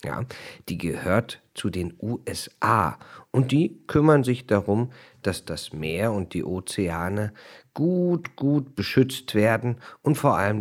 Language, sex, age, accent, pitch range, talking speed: German, male, 50-69, German, 95-150 Hz, 135 wpm